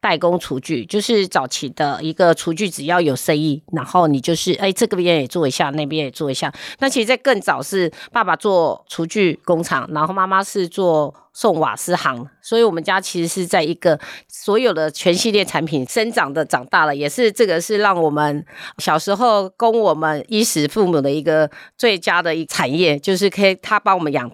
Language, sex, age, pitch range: Chinese, female, 30-49, 155-195 Hz